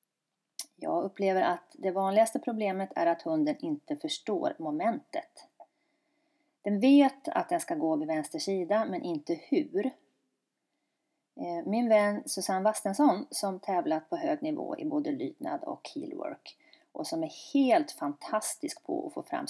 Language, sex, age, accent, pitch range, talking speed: Swedish, female, 30-49, native, 255-330 Hz, 140 wpm